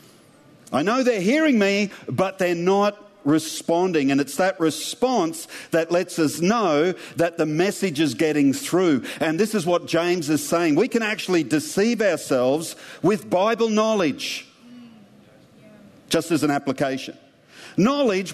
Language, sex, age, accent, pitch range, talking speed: English, male, 50-69, Australian, 155-225 Hz, 140 wpm